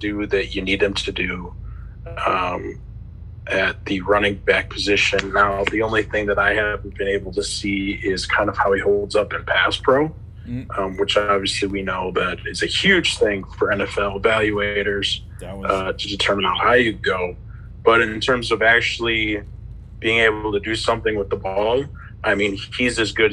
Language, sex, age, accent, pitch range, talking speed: English, male, 30-49, American, 100-110 Hz, 185 wpm